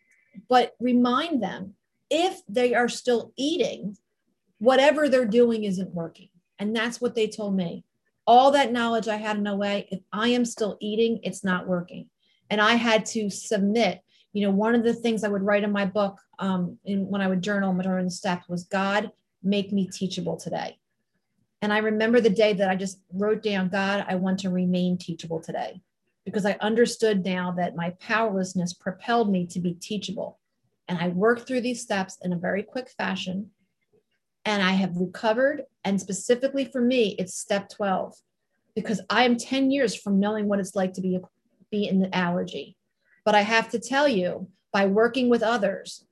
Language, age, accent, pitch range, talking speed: English, 40-59, American, 190-230 Hz, 185 wpm